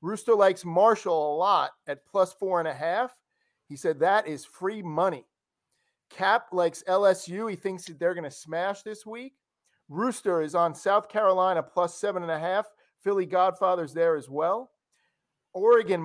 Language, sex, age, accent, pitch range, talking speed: English, male, 40-59, American, 170-210 Hz, 170 wpm